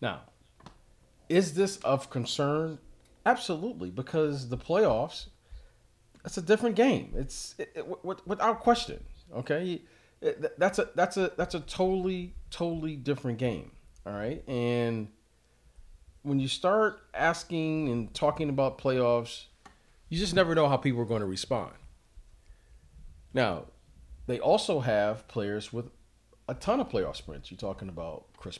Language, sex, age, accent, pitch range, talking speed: English, male, 40-59, American, 100-145 Hz, 130 wpm